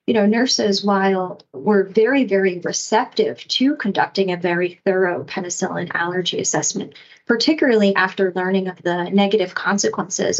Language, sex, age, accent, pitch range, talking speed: English, female, 30-49, American, 185-215 Hz, 135 wpm